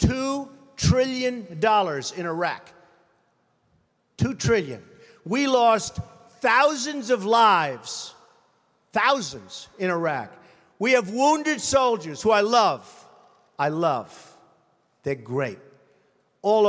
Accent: American